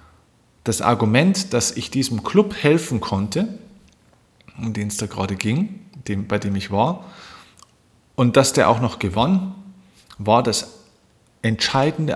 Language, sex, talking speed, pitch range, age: German, male, 135 wpm, 110-135 Hz, 40-59